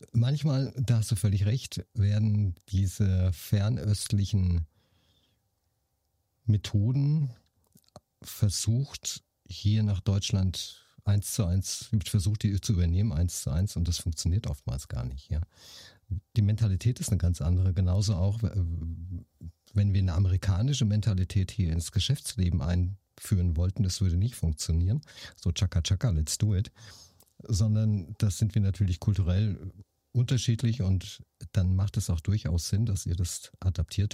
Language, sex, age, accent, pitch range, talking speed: German, male, 50-69, German, 90-110 Hz, 135 wpm